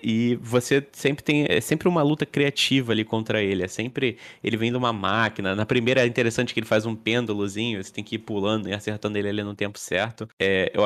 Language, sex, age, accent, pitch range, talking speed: Portuguese, male, 20-39, Brazilian, 105-125 Hz, 225 wpm